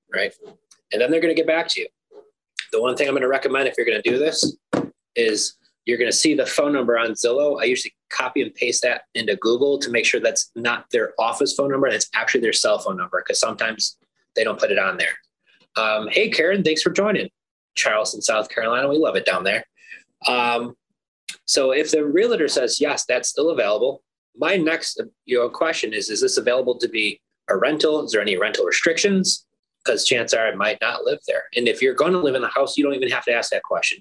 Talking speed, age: 230 wpm, 20-39